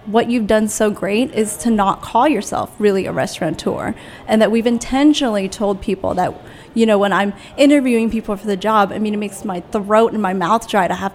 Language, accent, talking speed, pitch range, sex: English, American, 220 wpm, 195-225 Hz, female